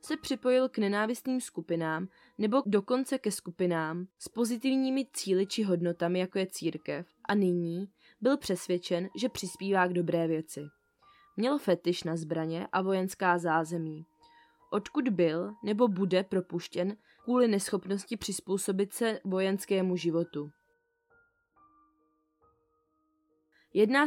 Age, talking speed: 20-39, 110 wpm